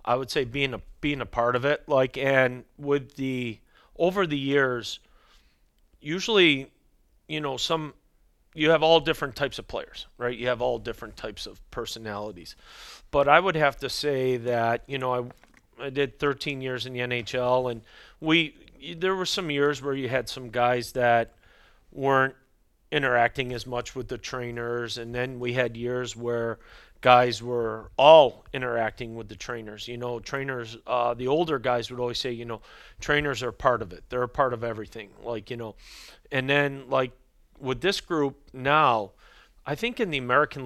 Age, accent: 40-59, American